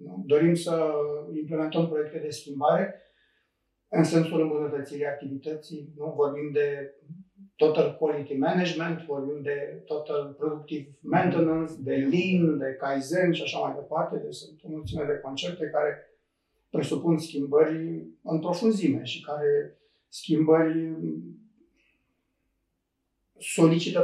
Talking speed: 110 wpm